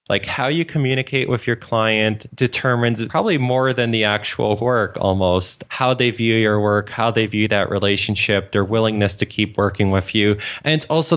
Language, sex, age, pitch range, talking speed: English, male, 20-39, 100-115 Hz, 190 wpm